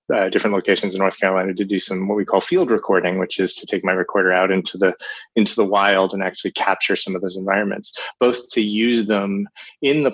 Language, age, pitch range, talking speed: English, 30-49, 95-110 Hz, 230 wpm